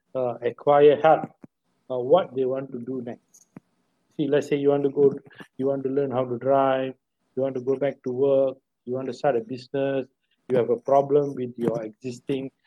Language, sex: English, male